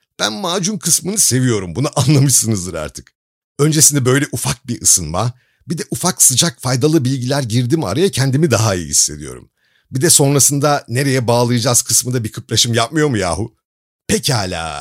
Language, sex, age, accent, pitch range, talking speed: Turkish, male, 50-69, native, 105-145 Hz, 145 wpm